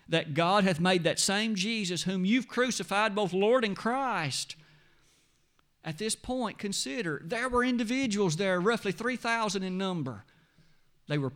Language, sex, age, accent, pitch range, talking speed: English, male, 50-69, American, 140-195 Hz, 150 wpm